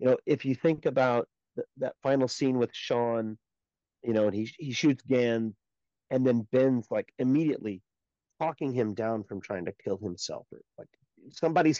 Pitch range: 105-135 Hz